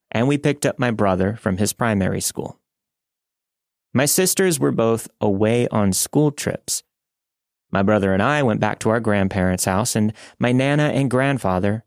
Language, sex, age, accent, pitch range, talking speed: English, male, 30-49, American, 95-125 Hz, 165 wpm